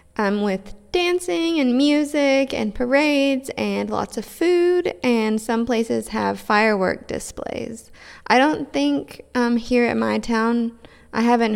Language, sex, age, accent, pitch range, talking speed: English, female, 20-39, American, 195-240 Hz, 140 wpm